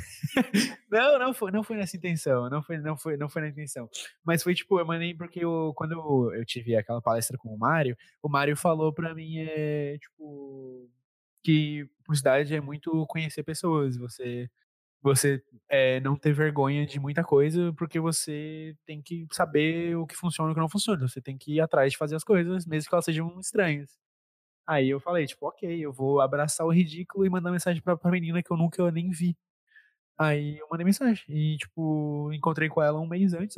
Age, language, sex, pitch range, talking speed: 20-39, Portuguese, male, 140-170 Hz, 205 wpm